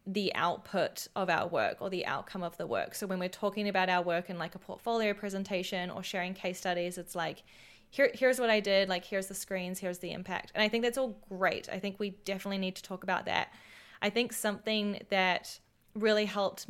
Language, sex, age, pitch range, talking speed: English, female, 10-29, 185-210 Hz, 225 wpm